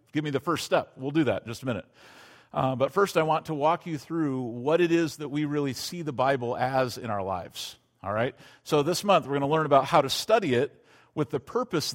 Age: 40-59